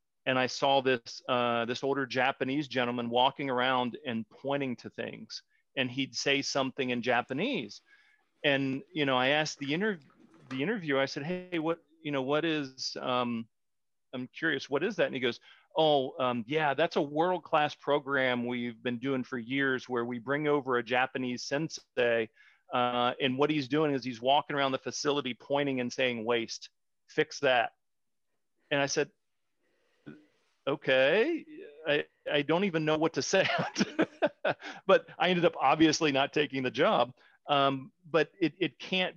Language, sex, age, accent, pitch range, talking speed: English, male, 40-59, American, 130-160 Hz, 170 wpm